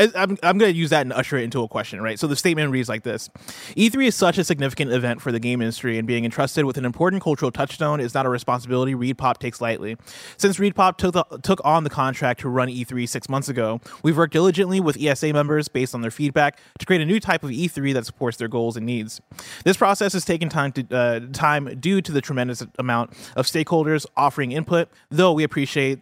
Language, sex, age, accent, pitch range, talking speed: English, male, 20-39, American, 125-165 Hz, 235 wpm